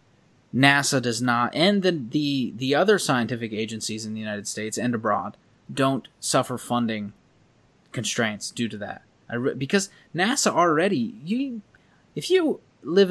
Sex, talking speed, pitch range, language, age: male, 145 wpm, 120-170 Hz, English, 20-39